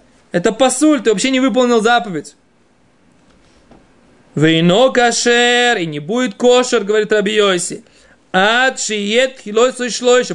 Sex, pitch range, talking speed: male, 185-245 Hz, 120 wpm